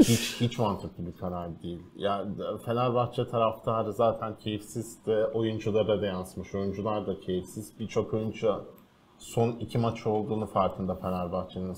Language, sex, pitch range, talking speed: Turkish, male, 95-110 Hz, 130 wpm